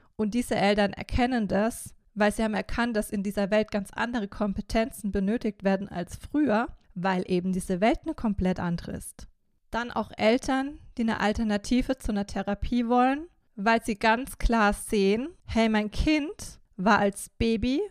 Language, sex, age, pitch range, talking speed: German, female, 20-39, 205-245 Hz, 165 wpm